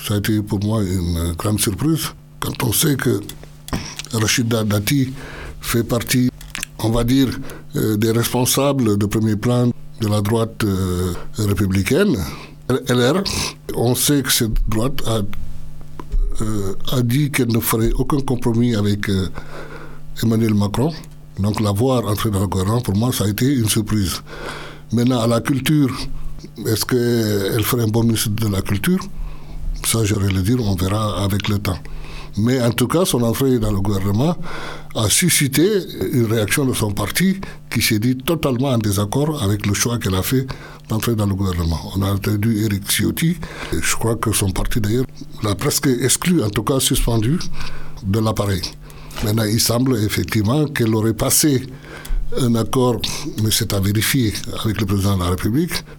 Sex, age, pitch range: male, 60-79, 105-135 Hz